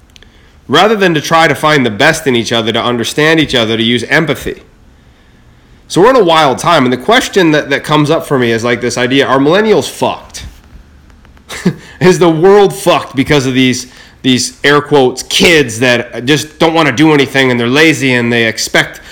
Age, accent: 30-49, American